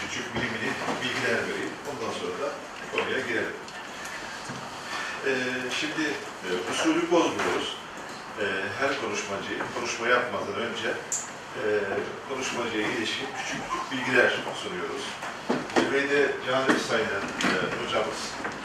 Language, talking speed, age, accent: Turkish, 105 wpm, 40-59, native